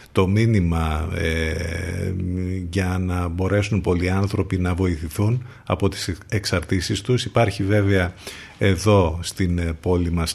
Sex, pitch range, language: male, 90-110 Hz, Greek